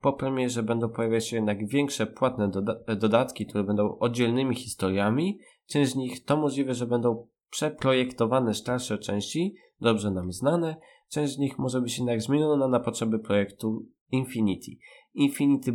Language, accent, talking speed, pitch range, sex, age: Polish, native, 150 wpm, 110-130 Hz, male, 20-39